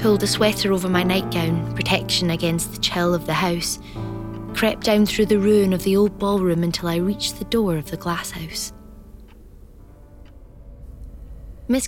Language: English